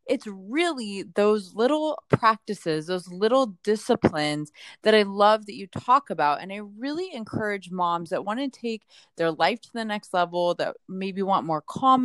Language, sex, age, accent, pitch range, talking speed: English, female, 20-39, American, 160-220 Hz, 175 wpm